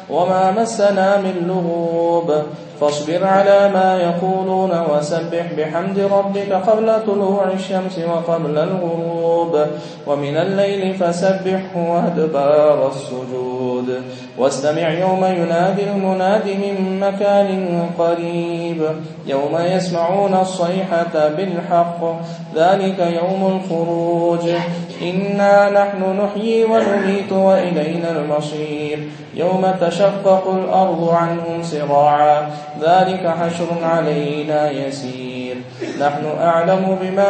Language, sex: English, male